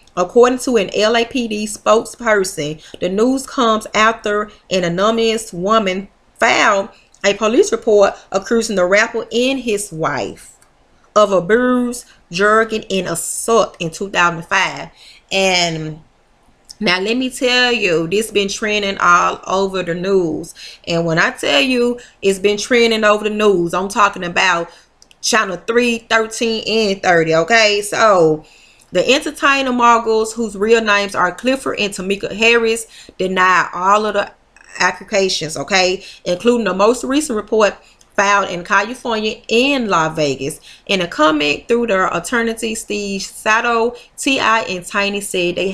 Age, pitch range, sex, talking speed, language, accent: 30-49, 180-225 Hz, female, 140 wpm, English, American